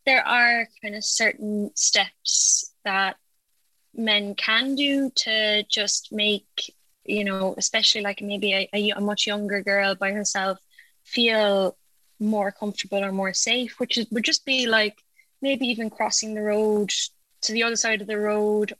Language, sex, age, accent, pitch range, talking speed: English, female, 10-29, Irish, 200-225 Hz, 160 wpm